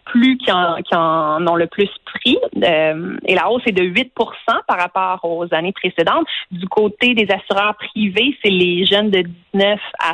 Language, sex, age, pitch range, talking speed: French, female, 30-49, 175-225 Hz, 180 wpm